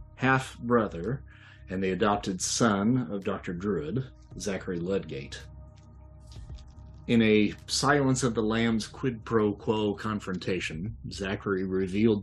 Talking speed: 110 wpm